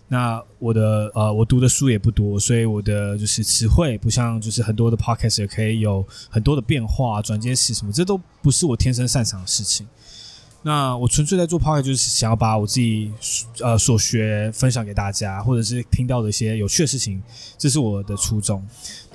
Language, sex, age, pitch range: Chinese, male, 20-39, 110-130 Hz